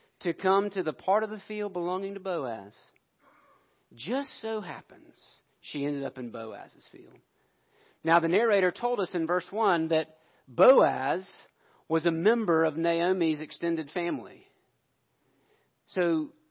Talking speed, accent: 140 wpm, American